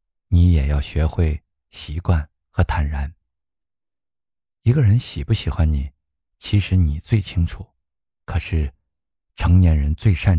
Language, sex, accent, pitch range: Chinese, male, native, 75-100 Hz